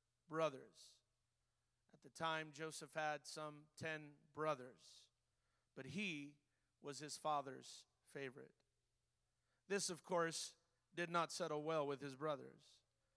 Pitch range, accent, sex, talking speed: 150-190 Hz, American, male, 115 wpm